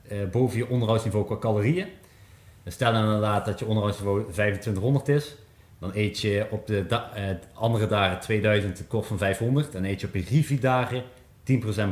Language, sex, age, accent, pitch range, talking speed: Dutch, male, 30-49, Dutch, 100-120 Hz, 160 wpm